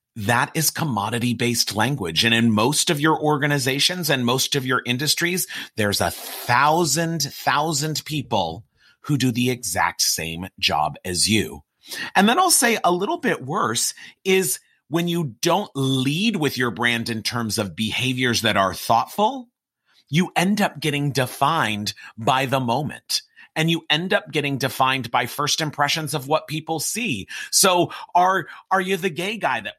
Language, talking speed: English, 160 wpm